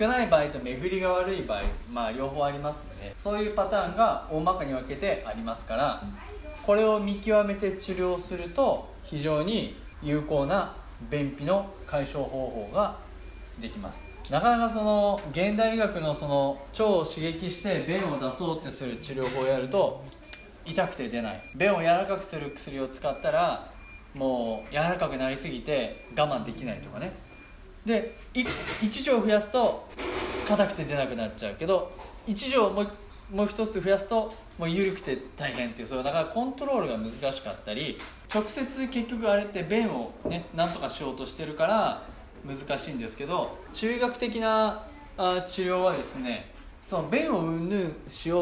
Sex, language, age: male, Japanese, 20-39